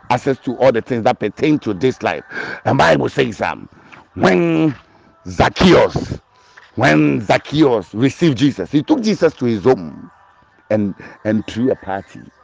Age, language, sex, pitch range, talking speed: 50-69, English, male, 115-135 Hz, 155 wpm